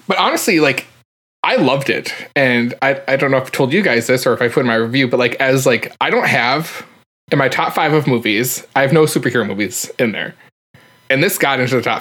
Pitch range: 125-150 Hz